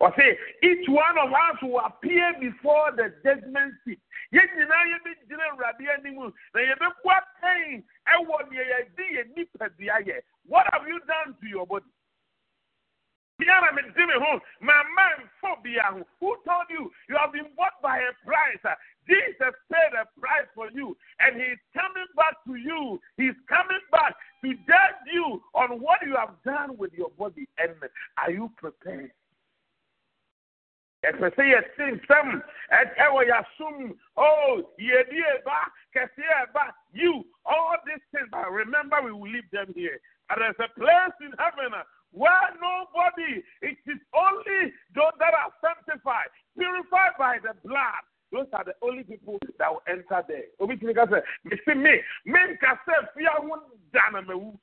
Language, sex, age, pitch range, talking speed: English, male, 50-69, 245-340 Hz, 120 wpm